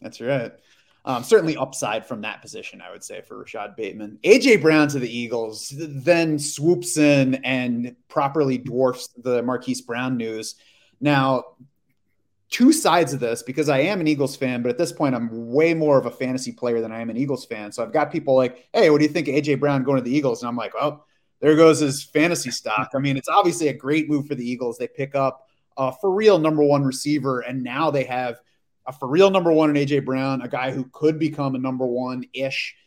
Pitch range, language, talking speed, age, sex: 125-150 Hz, English, 225 wpm, 30-49, male